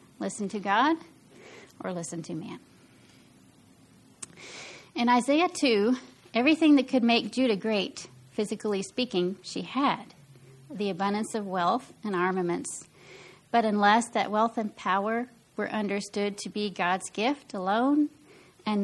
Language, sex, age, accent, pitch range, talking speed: English, female, 40-59, American, 195-245 Hz, 125 wpm